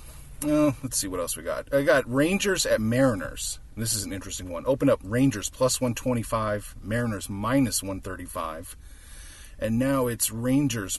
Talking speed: 170 wpm